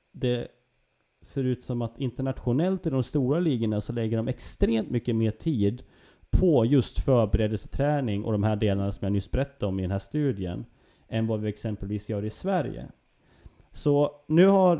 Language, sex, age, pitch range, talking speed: Swedish, male, 30-49, 105-145 Hz, 175 wpm